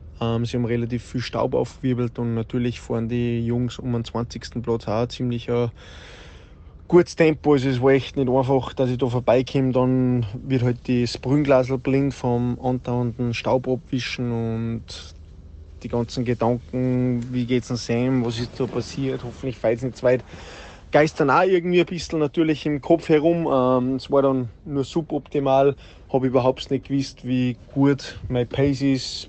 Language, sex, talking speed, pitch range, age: German, male, 165 wpm, 115-135 Hz, 20-39